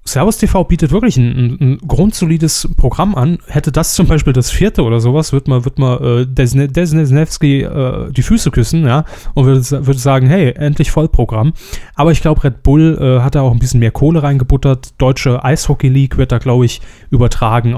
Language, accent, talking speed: German, German, 190 wpm